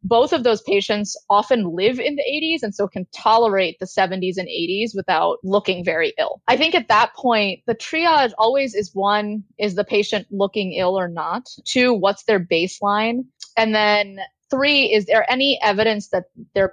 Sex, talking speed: female, 185 wpm